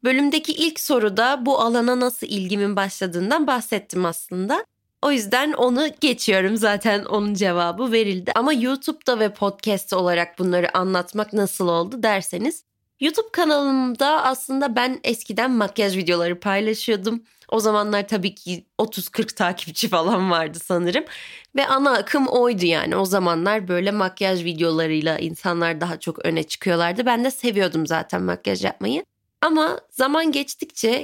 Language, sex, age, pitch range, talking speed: Turkish, female, 30-49, 185-255 Hz, 135 wpm